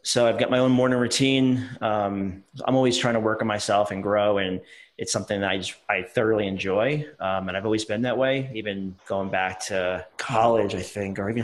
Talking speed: 220 wpm